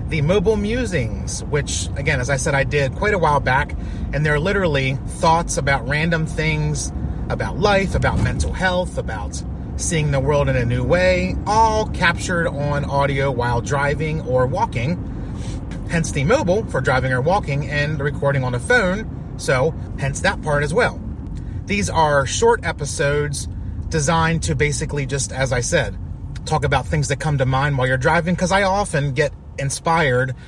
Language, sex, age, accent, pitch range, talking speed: English, male, 30-49, American, 125-155 Hz, 170 wpm